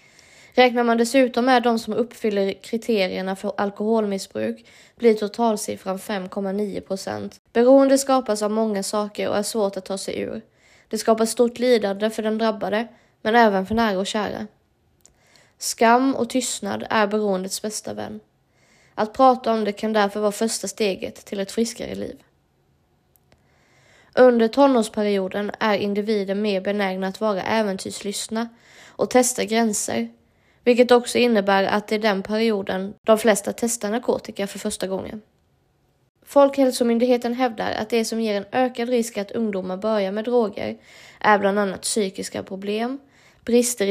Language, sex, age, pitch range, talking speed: Swedish, female, 20-39, 200-235 Hz, 145 wpm